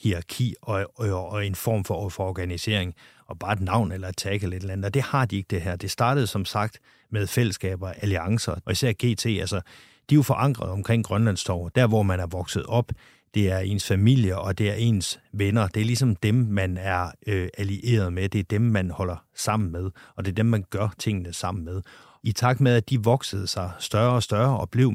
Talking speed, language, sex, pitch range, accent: 230 wpm, Danish, male, 95-115 Hz, native